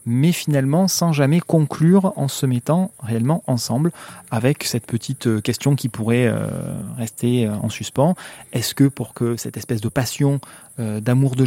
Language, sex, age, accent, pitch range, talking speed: French, male, 30-49, French, 120-160 Hz, 160 wpm